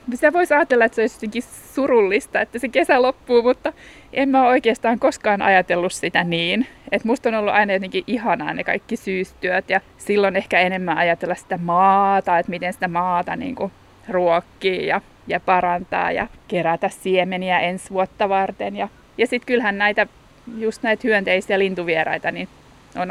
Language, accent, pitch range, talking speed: Finnish, native, 180-230 Hz, 165 wpm